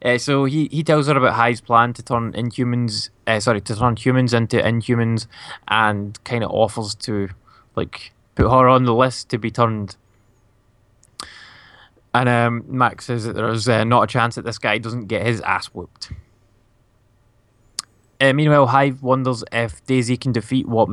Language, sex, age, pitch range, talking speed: English, male, 20-39, 110-130 Hz, 170 wpm